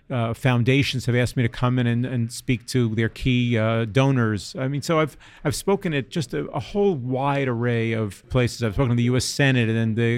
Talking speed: 230 wpm